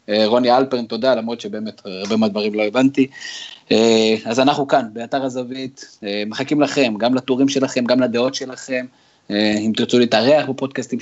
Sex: male